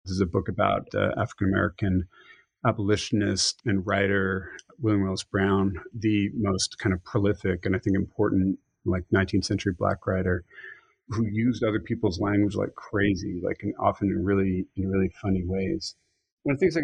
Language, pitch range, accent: English, 95-115 Hz, American